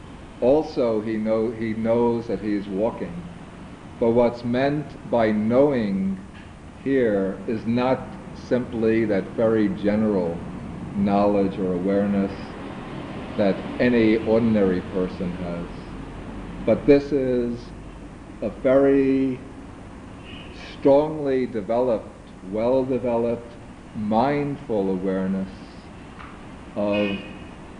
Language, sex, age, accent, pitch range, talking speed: English, male, 50-69, American, 95-115 Hz, 85 wpm